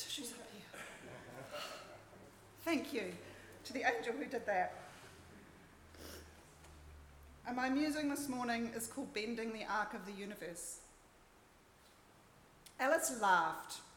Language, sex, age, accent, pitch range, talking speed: English, female, 40-59, Australian, 210-270 Hz, 110 wpm